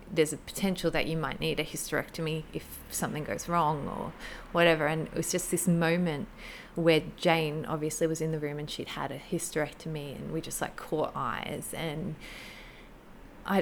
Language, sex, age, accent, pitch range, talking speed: English, female, 20-39, Australian, 155-185 Hz, 180 wpm